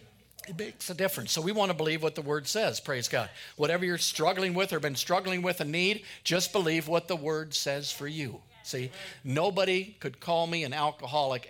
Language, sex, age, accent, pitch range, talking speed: English, male, 50-69, American, 140-185 Hz, 210 wpm